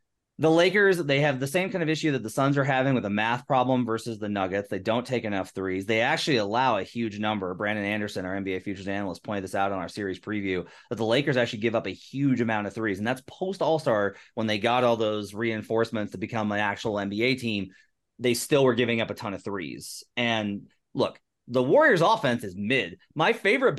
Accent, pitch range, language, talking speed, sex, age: American, 110-175 Hz, English, 225 wpm, male, 30-49